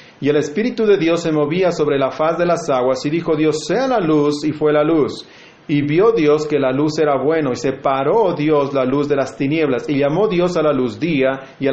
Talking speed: 245 wpm